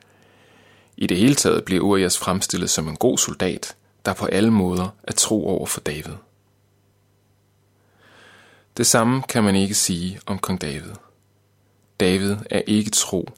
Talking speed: 150 wpm